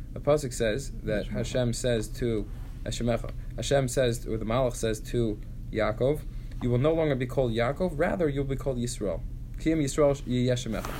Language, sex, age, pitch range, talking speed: English, male, 20-39, 115-135 Hz, 165 wpm